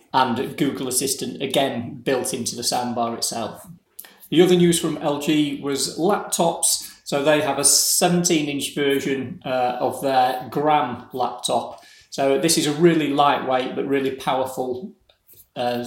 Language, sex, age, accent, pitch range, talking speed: English, male, 30-49, British, 125-155 Hz, 140 wpm